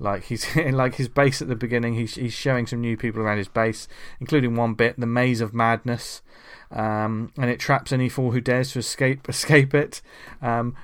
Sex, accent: male, British